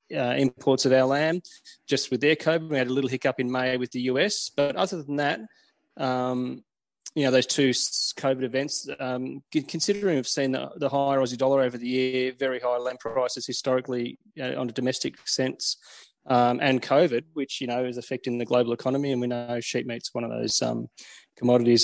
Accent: Australian